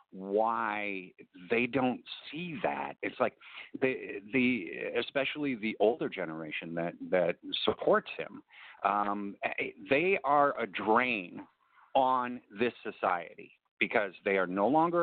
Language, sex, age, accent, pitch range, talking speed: English, male, 50-69, American, 95-130 Hz, 125 wpm